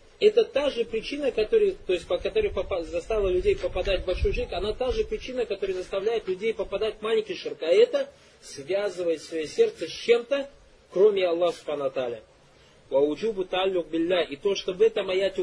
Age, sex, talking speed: 20-39, male, 145 wpm